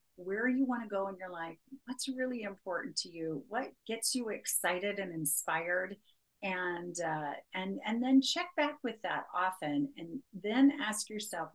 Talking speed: 170 wpm